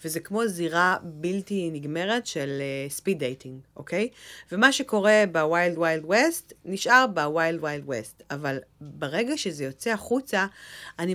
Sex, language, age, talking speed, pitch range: female, Hebrew, 30-49, 135 wpm, 160-220 Hz